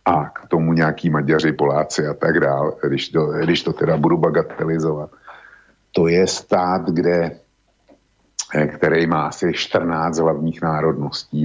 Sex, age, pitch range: male, 50-69, 75-85 Hz